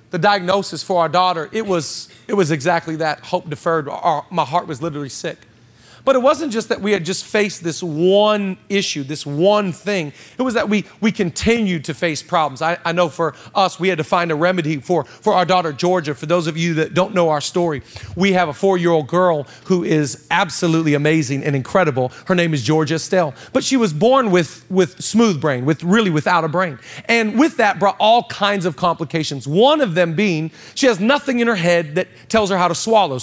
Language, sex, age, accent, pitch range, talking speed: English, male, 40-59, American, 165-205 Hz, 220 wpm